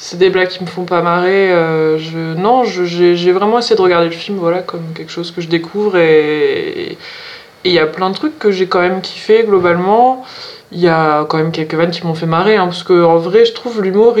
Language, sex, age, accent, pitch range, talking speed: French, female, 20-39, French, 170-205 Hz, 250 wpm